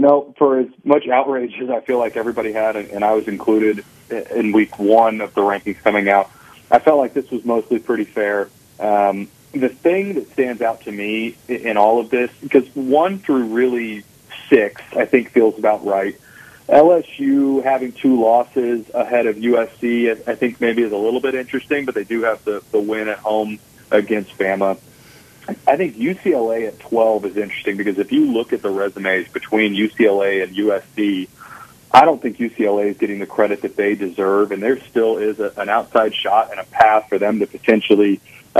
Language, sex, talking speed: English, male, 195 wpm